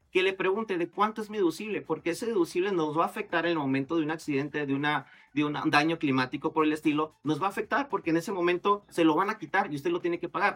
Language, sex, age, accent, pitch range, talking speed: Spanish, male, 40-59, Mexican, 155-195 Hz, 280 wpm